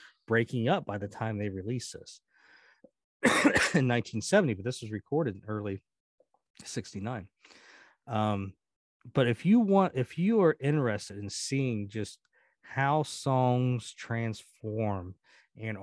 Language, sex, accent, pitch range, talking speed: English, male, American, 105-150 Hz, 125 wpm